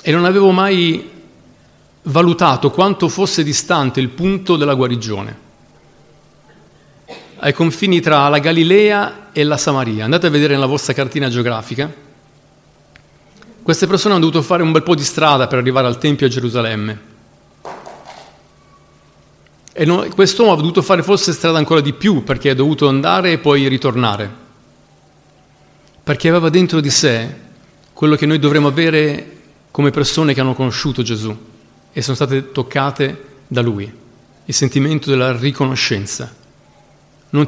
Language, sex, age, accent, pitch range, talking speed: Italian, male, 40-59, native, 130-160 Hz, 140 wpm